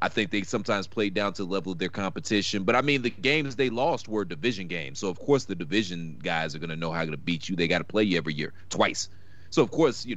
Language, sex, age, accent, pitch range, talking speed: English, male, 30-49, American, 90-120 Hz, 285 wpm